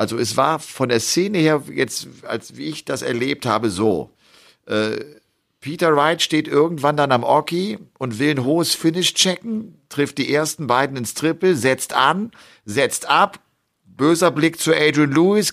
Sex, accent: male, German